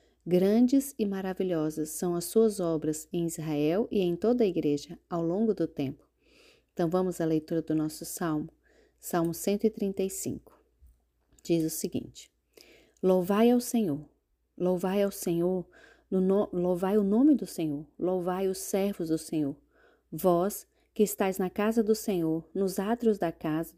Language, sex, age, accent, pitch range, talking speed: Portuguese, female, 30-49, Brazilian, 170-210 Hz, 145 wpm